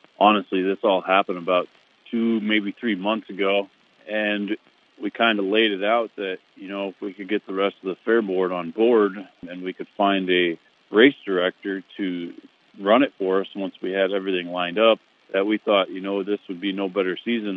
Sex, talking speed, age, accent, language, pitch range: male, 210 wpm, 40-59, American, English, 100-125 Hz